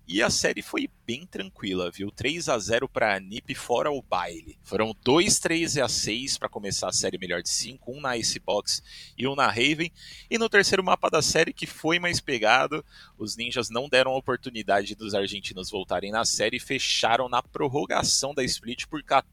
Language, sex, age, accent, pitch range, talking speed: Portuguese, male, 30-49, Brazilian, 95-130 Hz, 200 wpm